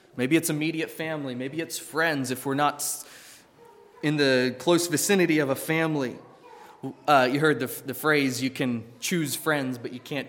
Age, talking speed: 20-39, 175 wpm